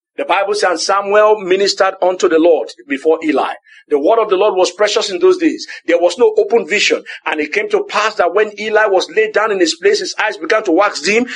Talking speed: 240 wpm